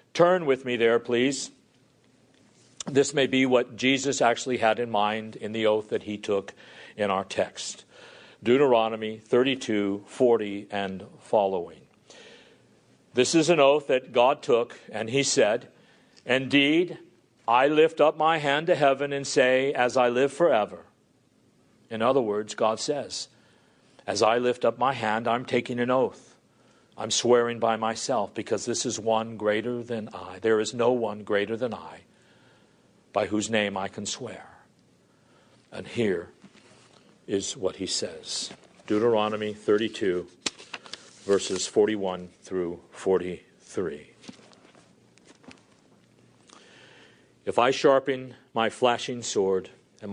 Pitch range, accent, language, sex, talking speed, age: 105-130 Hz, American, English, male, 130 wpm, 50-69